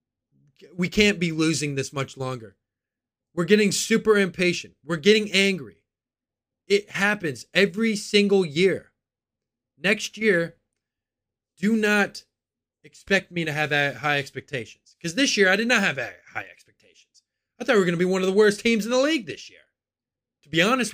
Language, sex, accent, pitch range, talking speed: English, male, American, 140-235 Hz, 165 wpm